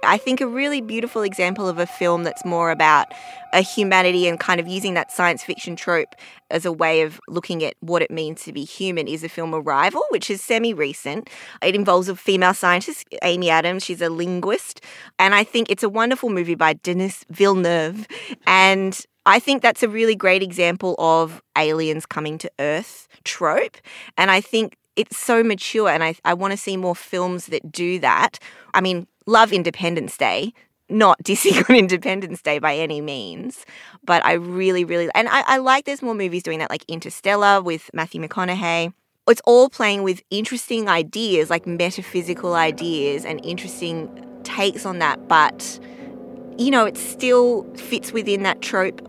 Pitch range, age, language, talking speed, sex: 170-225 Hz, 20-39, English, 180 wpm, female